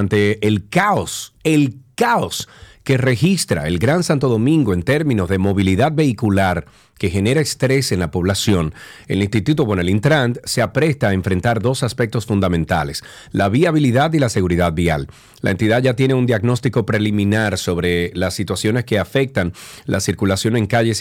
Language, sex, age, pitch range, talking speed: Spanish, male, 40-59, 95-125 Hz, 150 wpm